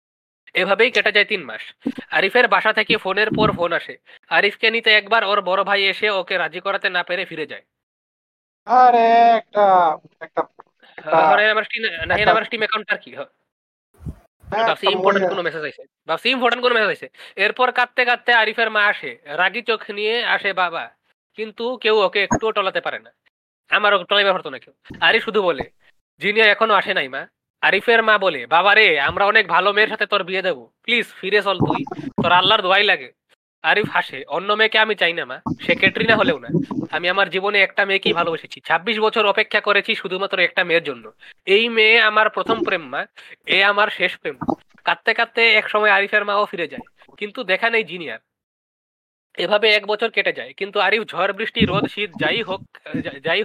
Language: Bengali